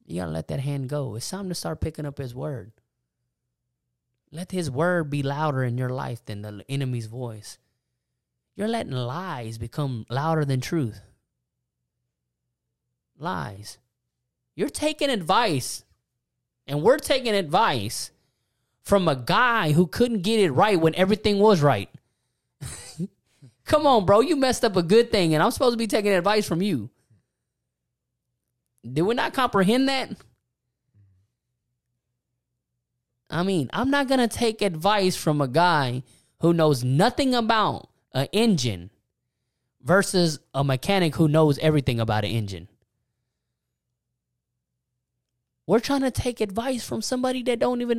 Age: 20-39